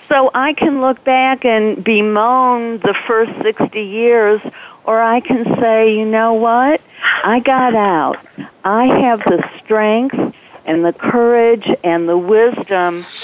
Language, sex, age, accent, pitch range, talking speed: English, female, 50-69, American, 200-255 Hz, 140 wpm